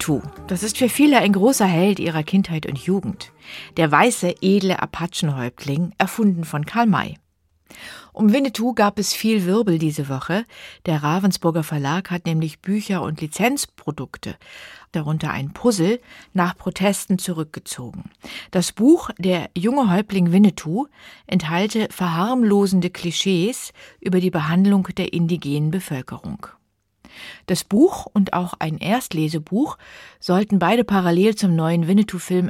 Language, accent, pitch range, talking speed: German, German, 160-205 Hz, 125 wpm